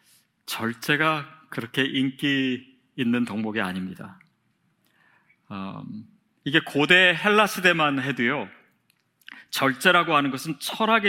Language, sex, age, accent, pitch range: Korean, male, 30-49, native, 120-190 Hz